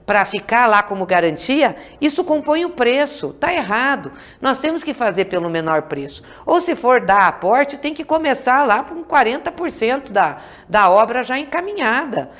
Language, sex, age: Portuguese, female, 50-69